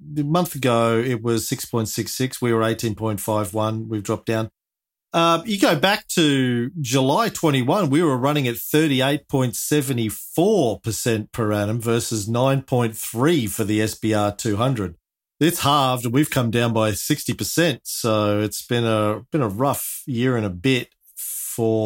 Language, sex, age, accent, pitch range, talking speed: English, male, 40-59, Australian, 110-140 Hz, 135 wpm